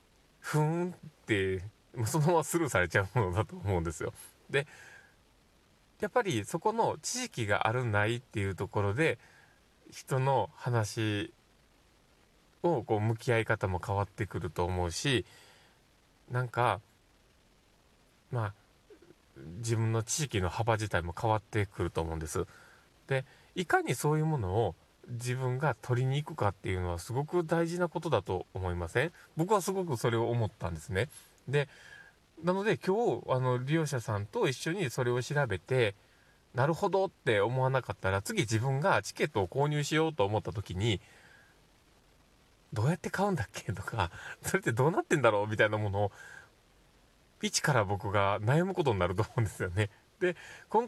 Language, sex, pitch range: Japanese, male, 100-150 Hz